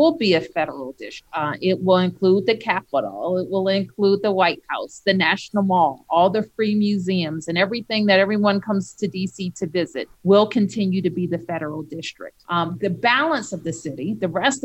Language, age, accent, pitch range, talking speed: English, 40-59, American, 170-205 Hz, 195 wpm